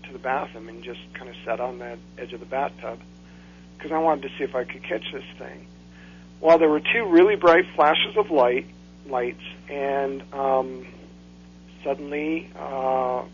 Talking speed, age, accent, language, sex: 175 wpm, 50-69, American, English, male